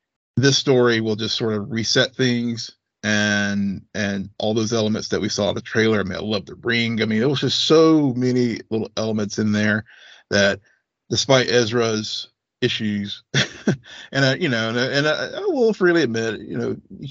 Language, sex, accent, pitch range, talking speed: English, male, American, 105-125 Hz, 180 wpm